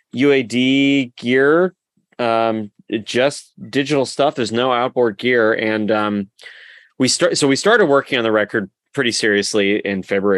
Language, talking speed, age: English, 145 wpm, 20-39